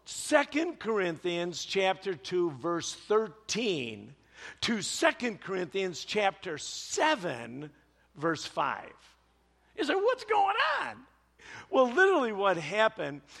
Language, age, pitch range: English, 50-69, 135-215 Hz